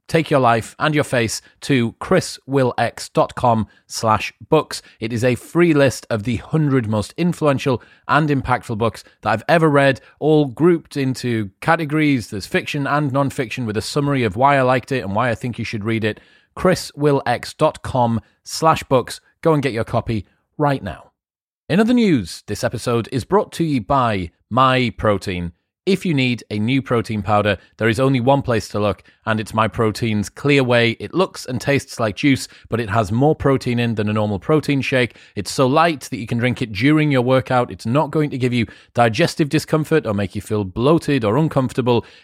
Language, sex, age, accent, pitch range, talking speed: English, male, 30-49, British, 110-145 Hz, 190 wpm